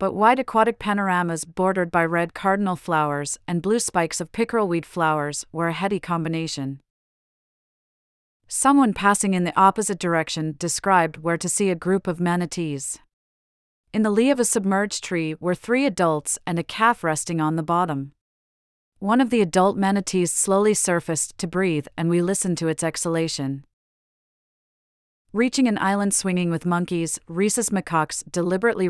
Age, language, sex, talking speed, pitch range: 40-59, English, female, 155 wpm, 165-200 Hz